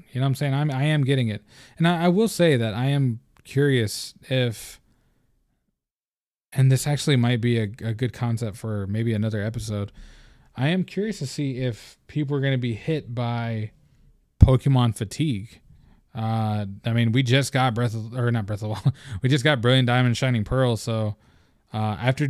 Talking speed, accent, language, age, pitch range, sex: 185 wpm, American, English, 20-39, 115-135 Hz, male